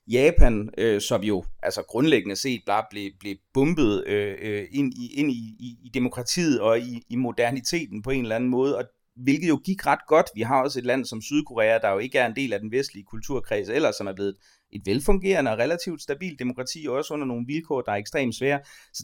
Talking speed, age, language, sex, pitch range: 220 wpm, 30-49, Danish, male, 115-150 Hz